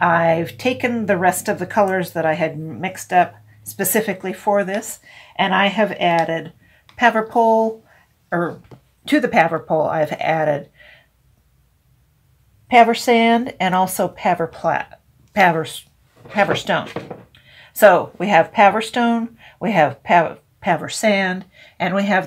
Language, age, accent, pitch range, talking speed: English, 50-69, American, 160-200 Hz, 130 wpm